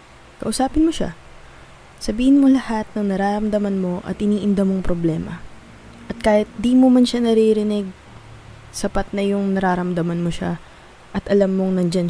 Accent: native